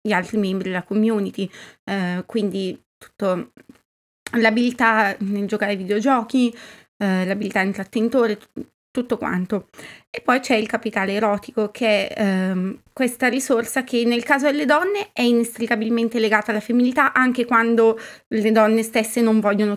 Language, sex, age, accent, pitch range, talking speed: Italian, female, 20-39, native, 210-240 Hz, 145 wpm